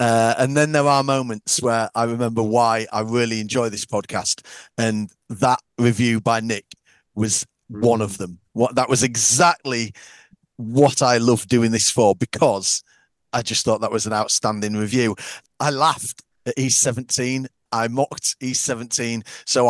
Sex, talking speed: male, 155 wpm